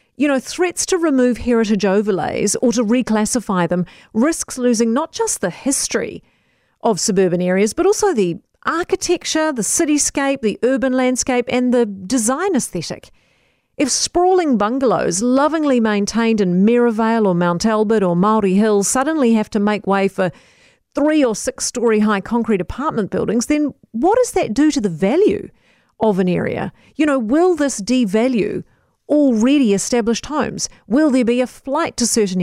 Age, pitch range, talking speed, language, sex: 40-59, 210-265 Hz, 155 wpm, English, female